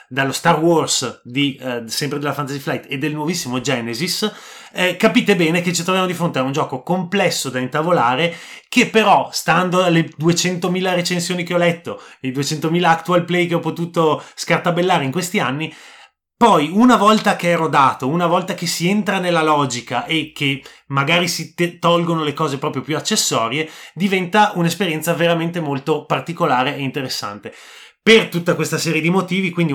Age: 30-49